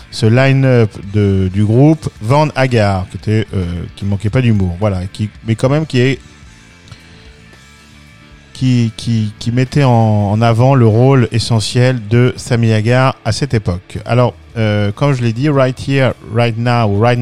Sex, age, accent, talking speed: male, 40-59, French, 165 wpm